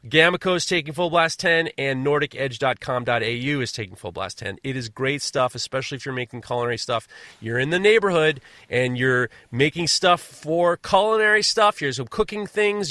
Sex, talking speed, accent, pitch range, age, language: male, 170 wpm, American, 130-185 Hz, 30-49, English